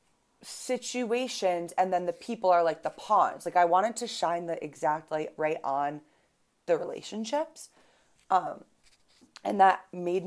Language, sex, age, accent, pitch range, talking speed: English, female, 20-39, American, 155-200 Hz, 145 wpm